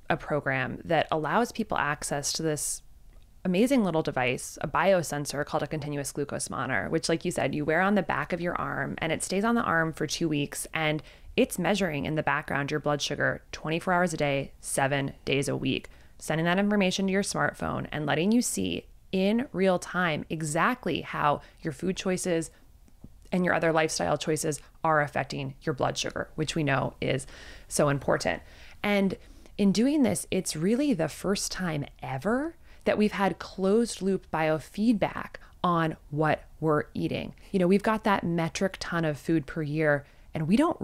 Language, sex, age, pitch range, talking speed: English, female, 20-39, 145-190 Hz, 180 wpm